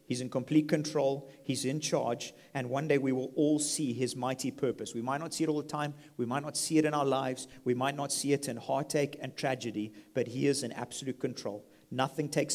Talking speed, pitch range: 240 wpm, 125-155 Hz